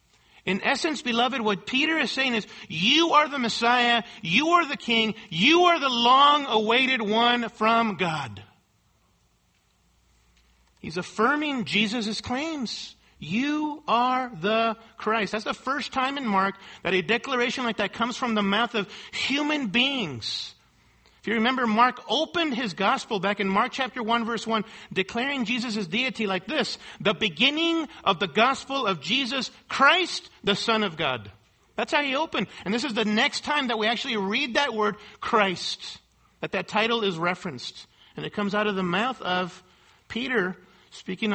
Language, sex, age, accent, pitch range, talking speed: English, male, 50-69, American, 190-255 Hz, 165 wpm